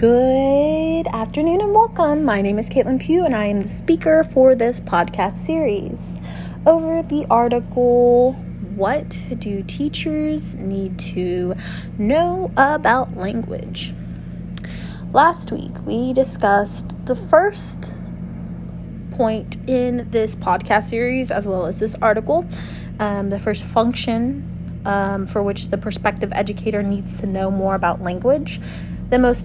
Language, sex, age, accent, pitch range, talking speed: English, female, 20-39, American, 180-255 Hz, 125 wpm